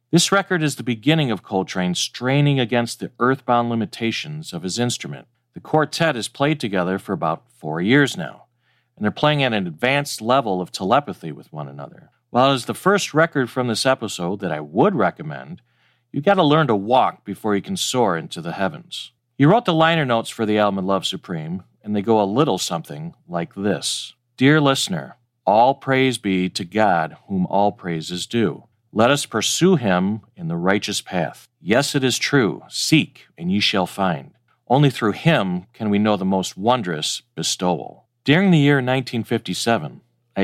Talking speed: 185 wpm